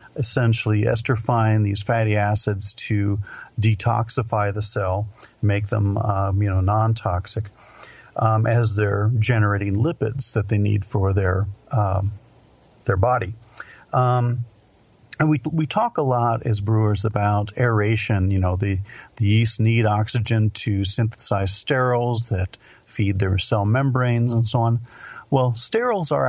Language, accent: English, American